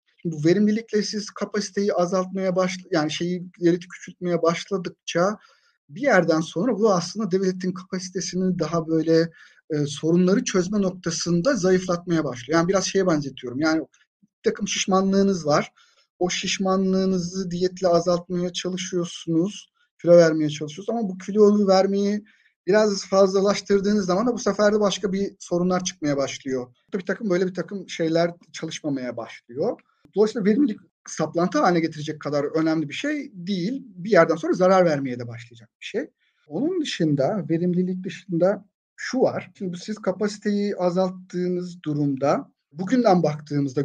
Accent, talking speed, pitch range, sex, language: native, 135 wpm, 165-205 Hz, male, Turkish